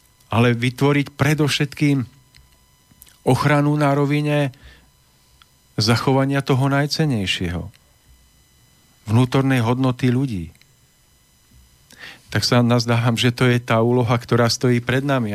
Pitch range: 110-135 Hz